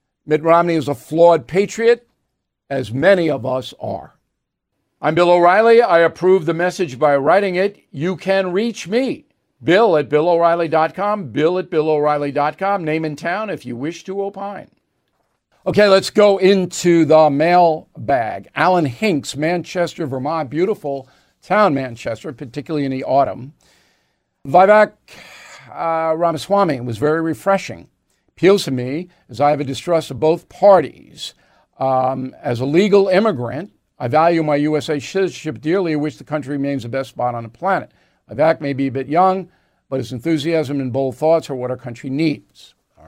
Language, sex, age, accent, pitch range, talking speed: English, male, 50-69, American, 140-180 Hz, 155 wpm